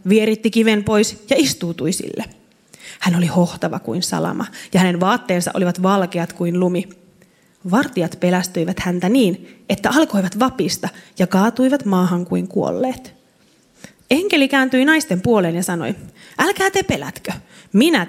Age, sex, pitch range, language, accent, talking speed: 30-49, female, 180-235 Hz, Finnish, native, 135 wpm